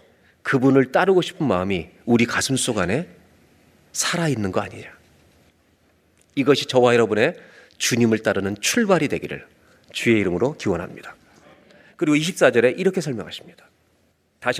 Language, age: Korean, 40-59